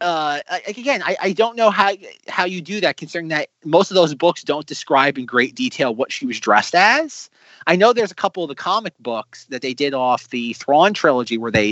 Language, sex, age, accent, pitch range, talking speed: English, male, 30-49, American, 125-180 Hz, 235 wpm